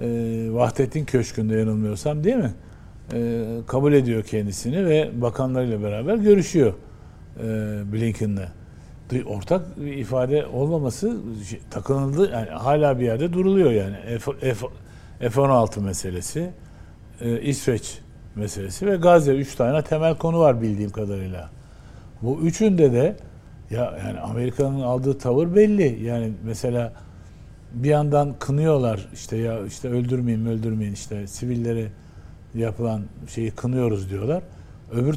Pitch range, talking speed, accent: 110-145 Hz, 120 wpm, native